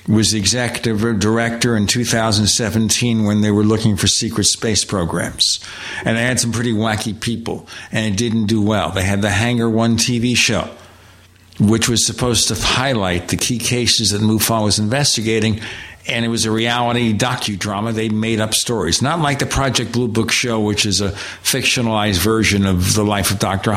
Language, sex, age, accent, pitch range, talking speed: English, male, 60-79, American, 105-120 Hz, 180 wpm